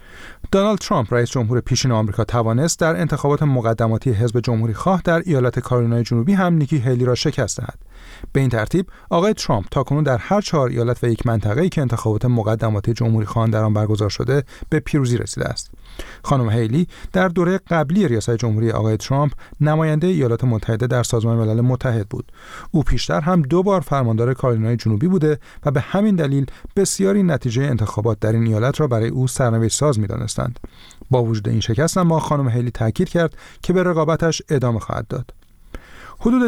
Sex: male